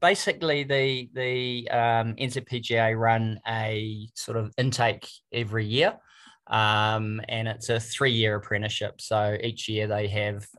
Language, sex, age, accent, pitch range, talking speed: English, male, 20-39, Australian, 105-120 Hz, 135 wpm